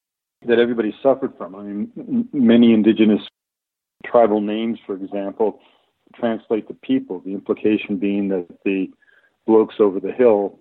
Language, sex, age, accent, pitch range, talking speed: English, male, 50-69, American, 100-125 Hz, 135 wpm